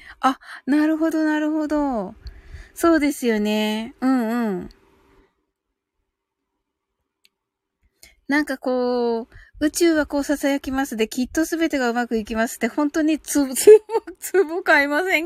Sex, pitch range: female, 215-295 Hz